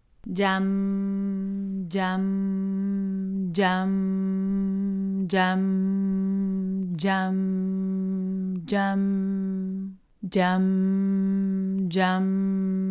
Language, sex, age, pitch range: Spanish, female, 30-49, 190-195 Hz